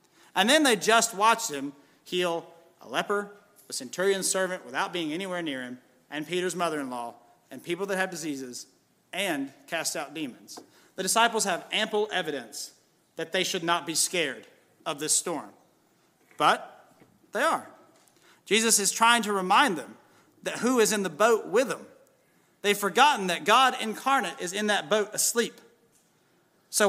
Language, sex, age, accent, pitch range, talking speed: English, male, 40-59, American, 170-230 Hz, 160 wpm